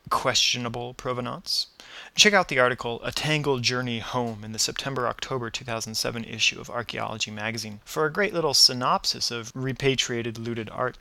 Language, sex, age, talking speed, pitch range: English, male, 30-49, 155 wpm, 115-145 Hz